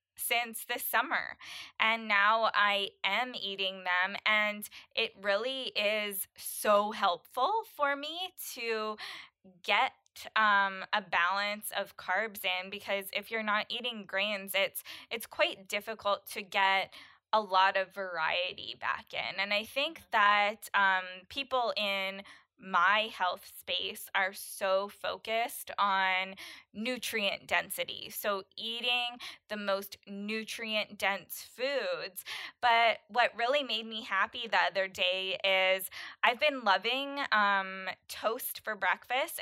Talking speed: 125 wpm